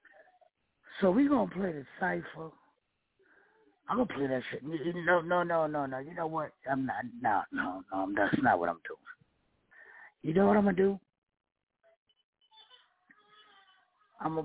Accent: American